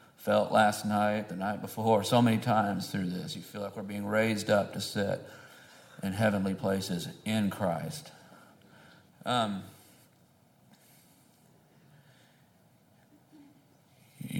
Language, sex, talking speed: English, male, 115 wpm